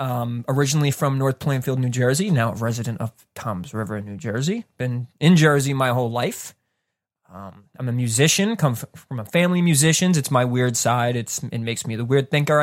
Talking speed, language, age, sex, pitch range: 205 wpm, English, 20-39, male, 125-170 Hz